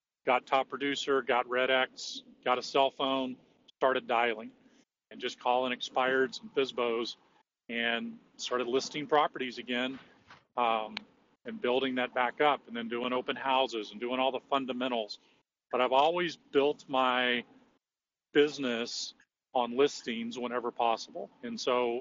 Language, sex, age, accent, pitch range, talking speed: English, male, 40-59, American, 120-140 Hz, 140 wpm